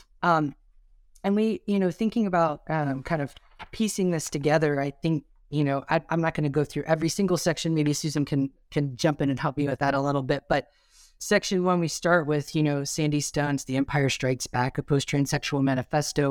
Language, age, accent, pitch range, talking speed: English, 30-49, American, 135-160 Hz, 215 wpm